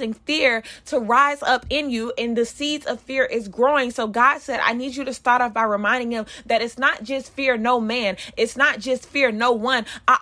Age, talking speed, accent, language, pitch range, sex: 20-39, 230 wpm, American, English, 210-255 Hz, female